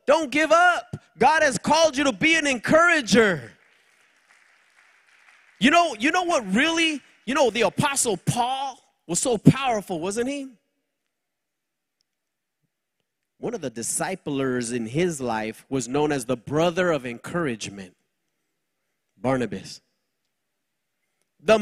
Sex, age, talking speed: male, 30-49, 120 wpm